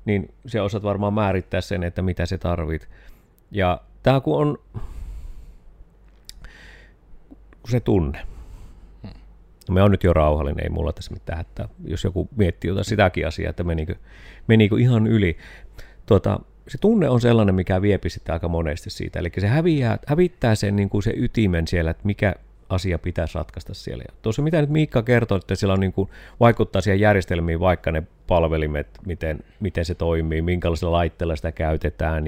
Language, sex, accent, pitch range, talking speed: Finnish, male, native, 80-100 Hz, 165 wpm